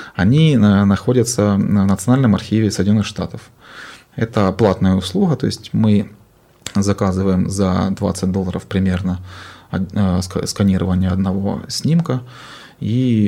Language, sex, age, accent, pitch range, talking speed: Ukrainian, male, 20-39, native, 95-110 Hz, 105 wpm